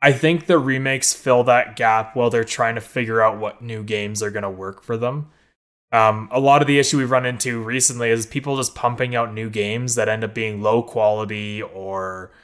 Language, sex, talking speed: English, male, 220 wpm